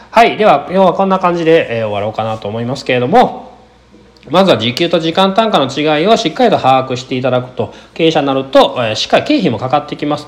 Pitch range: 120-185 Hz